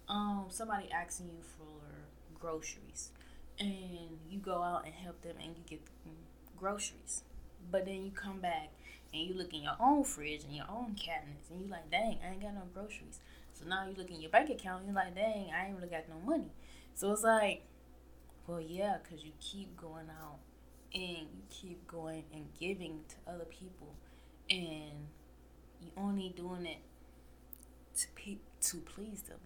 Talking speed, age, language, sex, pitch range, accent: 180 wpm, 20-39, English, female, 155-190 Hz, American